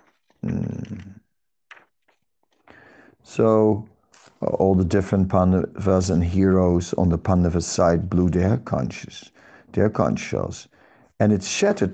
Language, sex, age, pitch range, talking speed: English, male, 50-69, 100-140 Hz, 100 wpm